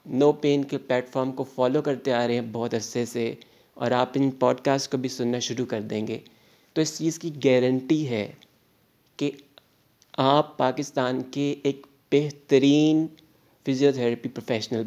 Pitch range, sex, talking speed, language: 120-145 Hz, male, 155 wpm, Urdu